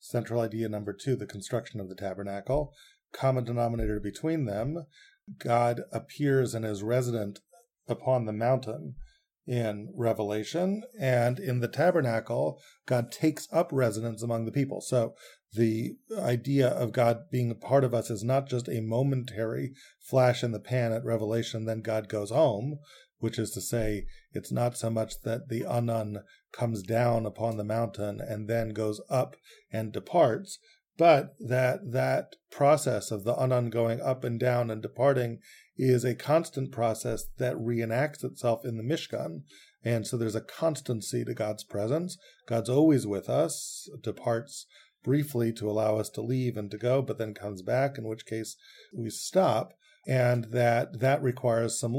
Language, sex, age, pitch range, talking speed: English, male, 30-49, 110-130 Hz, 160 wpm